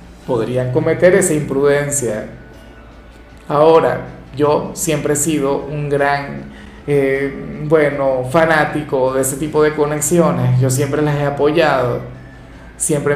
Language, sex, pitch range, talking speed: Spanish, male, 140-180 Hz, 115 wpm